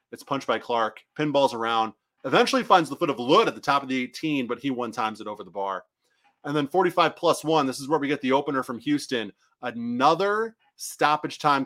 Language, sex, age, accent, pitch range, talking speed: English, male, 30-49, American, 120-165 Hz, 220 wpm